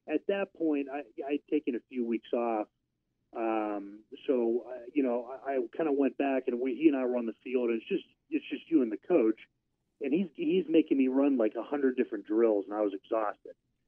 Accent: American